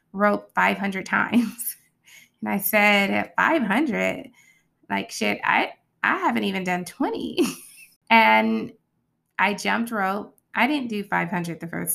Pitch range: 180-220 Hz